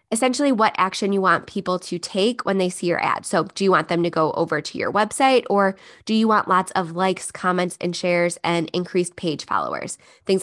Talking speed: 225 wpm